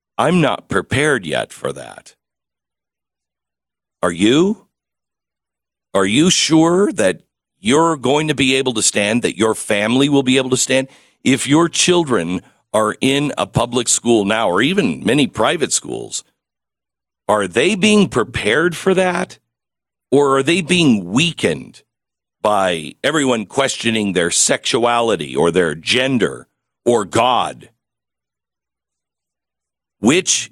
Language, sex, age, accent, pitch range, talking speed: English, male, 50-69, American, 95-140 Hz, 125 wpm